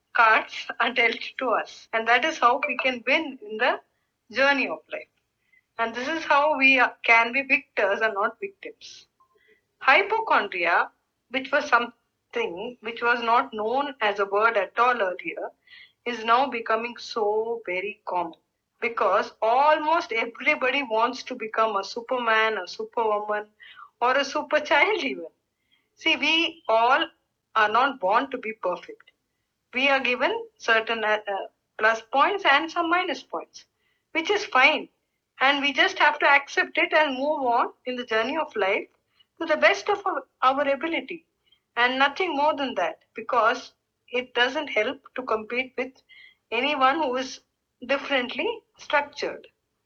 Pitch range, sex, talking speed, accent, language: 230-310 Hz, female, 150 wpm, Indian, English